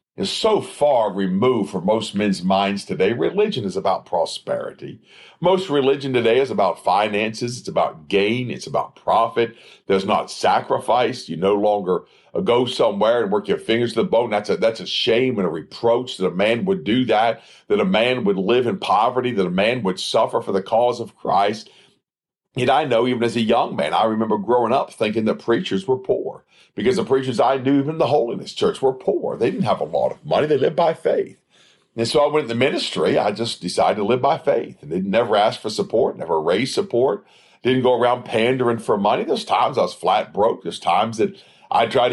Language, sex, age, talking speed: English, male, 50-69, 215 wpm